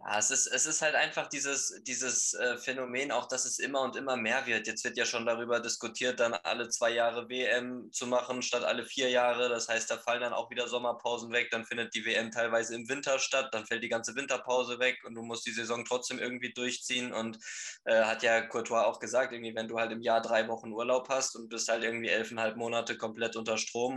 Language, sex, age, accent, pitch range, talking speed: German, male, 20-39, German, 110-125 Hz, 230 wpm